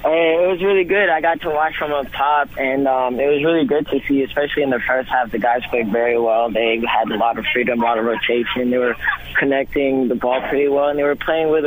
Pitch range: 115-135 Hz